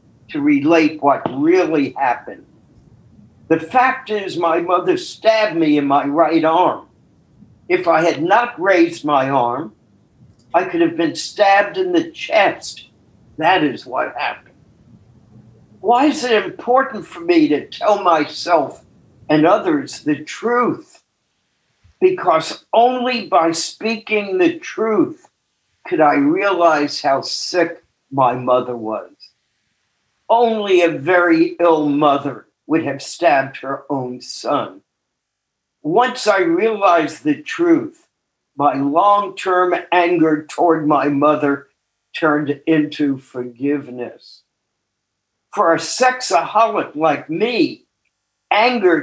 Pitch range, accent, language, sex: 145-240 Hz, American, English, male